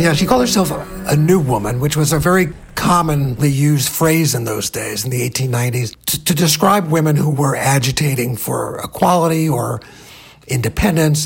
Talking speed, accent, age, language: 165 wpm, American, 50-69, English